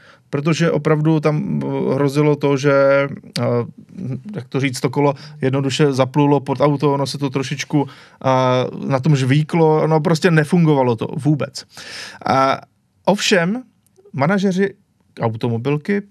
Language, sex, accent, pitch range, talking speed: Czech, male, native, 135-170 Hz, 120 wpm